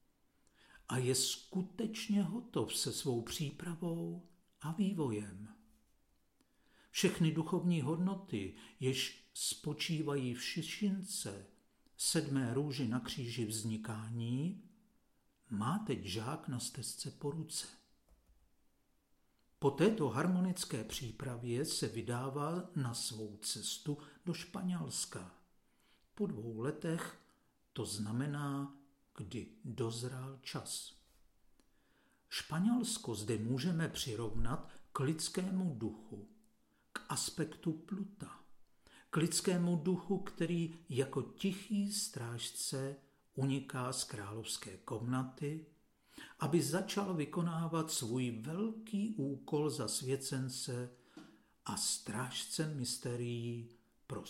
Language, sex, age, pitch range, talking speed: Czech, male, 50-69, 120-175 Hz, 90 wpm